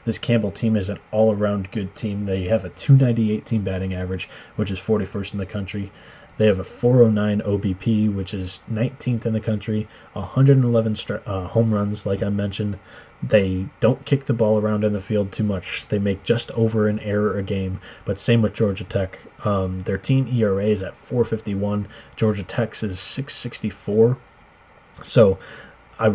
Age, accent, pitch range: 20-39, American, 100-115 Hz